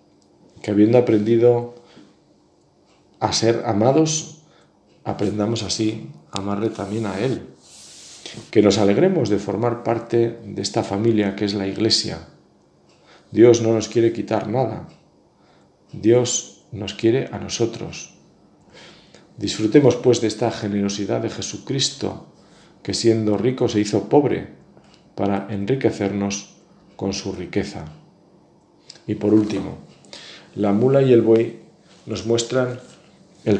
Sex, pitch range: male, 105-125 Hz